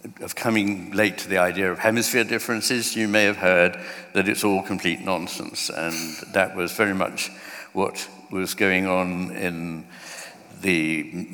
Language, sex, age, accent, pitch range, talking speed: English, male, 60-79, British, 95-110 Hz, 155 wpm